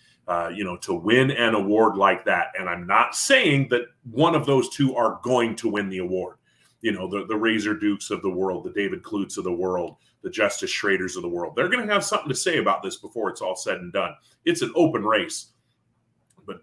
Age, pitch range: 30-49, 105-155 Hz